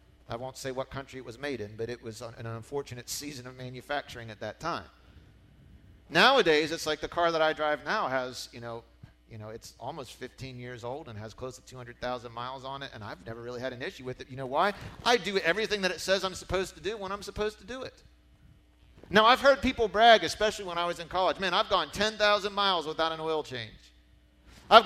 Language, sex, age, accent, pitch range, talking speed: English, male, 40-59, American, 120-200 Hz, 230 wpm